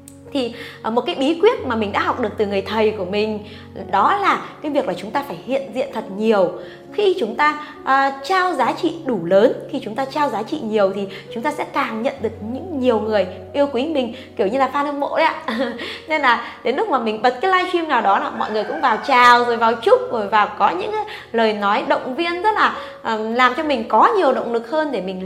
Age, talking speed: 20-39, 250 wpm